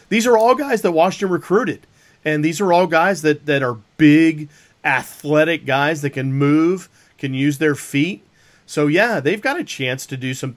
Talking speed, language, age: 195 wpm, English, 40-59